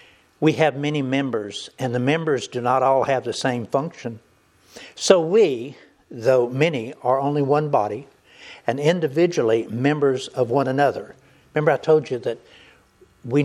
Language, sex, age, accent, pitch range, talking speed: English, male, 60-79, American, 130-160 Hz, 150 wpm